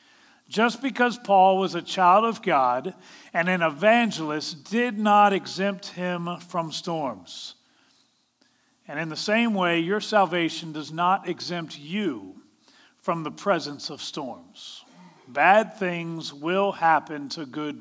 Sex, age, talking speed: male, 40-59, 130 wpm